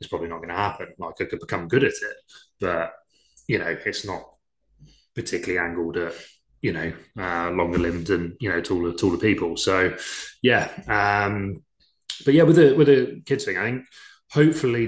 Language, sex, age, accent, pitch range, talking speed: English, male, 20-39, British, 85-110 Hz, 185 wpm